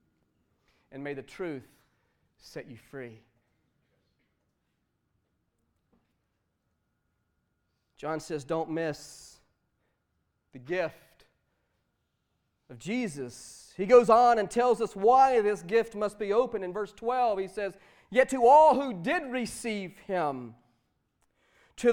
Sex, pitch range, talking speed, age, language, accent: male, 180-305 Hz, 110 wpm, 40-59, English, American